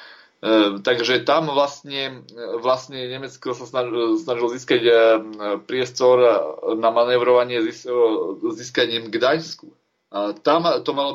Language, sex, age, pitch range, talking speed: Slovak, male, 30-49, 110-135 Hz, 100 wpm